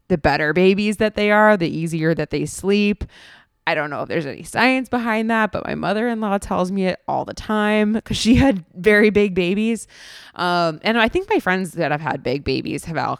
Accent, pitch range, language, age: American, 170-220 Hz, English, 20-39